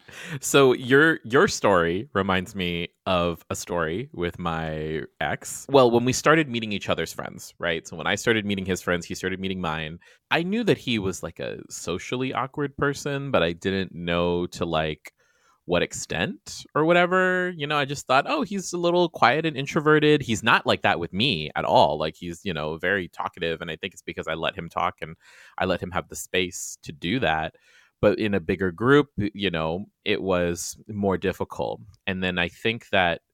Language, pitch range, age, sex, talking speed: English, 85-110 Hz, 30-49, male, 205 wpm